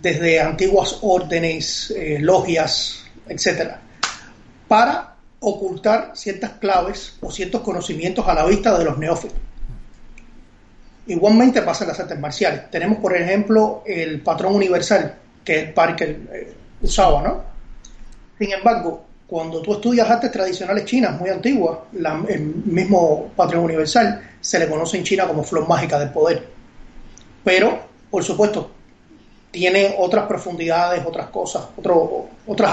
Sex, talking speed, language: male, 130 wpm, Spanish